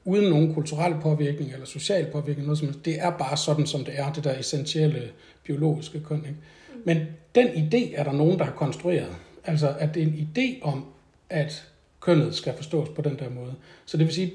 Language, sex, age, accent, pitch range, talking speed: Danish, male, 60-79, native, 140-160 Hz, 205 wpm